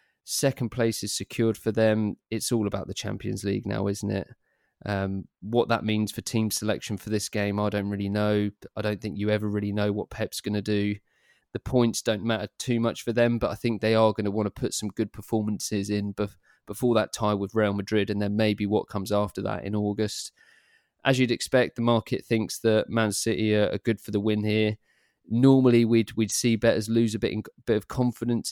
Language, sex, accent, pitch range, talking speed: English, male, British, 105-115 Hz, 220 wpm